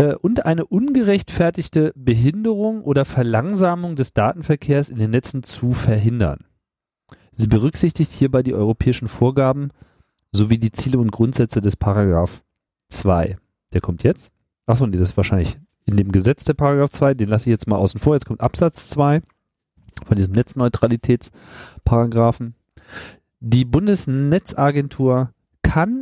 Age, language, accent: 40-59, German, German